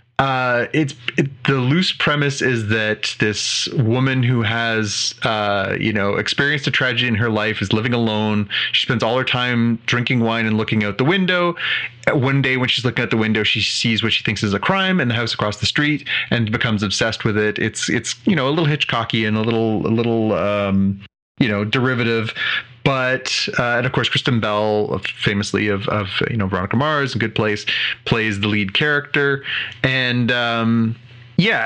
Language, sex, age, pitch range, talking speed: English, male, 30-49, 110-140 Hz, 195 wpm